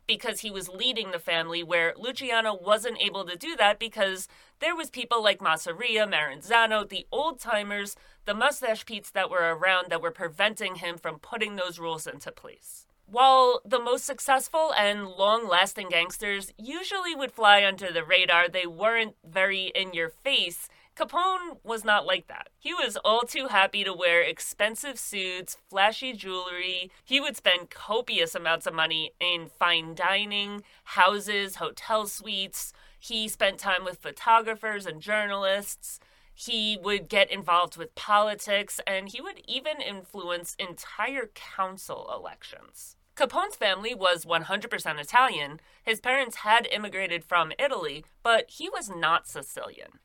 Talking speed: 150 wpm